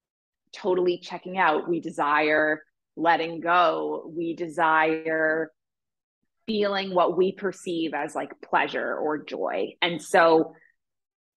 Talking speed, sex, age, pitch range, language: 105 wpm, female, 20-39, 160-185 Hz, English